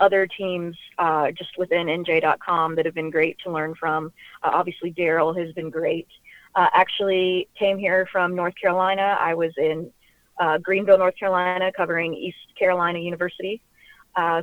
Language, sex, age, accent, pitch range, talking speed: English, female, 20-39, American, 170-190 Hz, 160 wpm